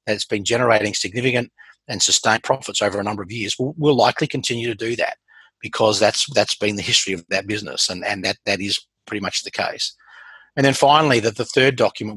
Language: English